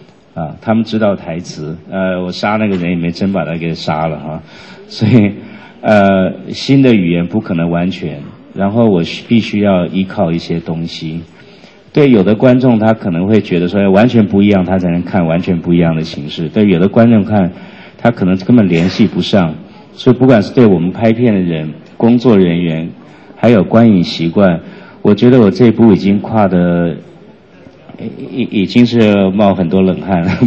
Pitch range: 90-115 Hz